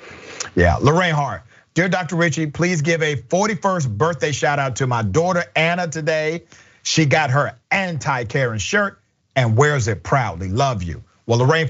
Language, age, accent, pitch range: English, 40-59, American, 115-160 Hz